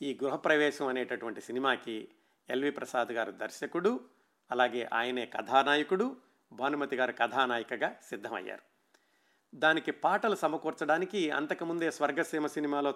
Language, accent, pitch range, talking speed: Telugu, native, 125-150 Hz, 95 wpm